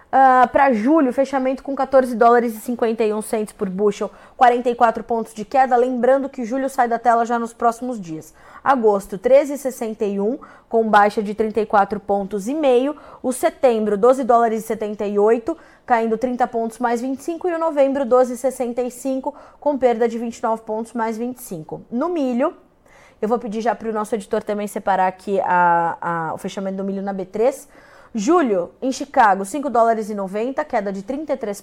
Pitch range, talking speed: 215-265 Hz, 155 wpm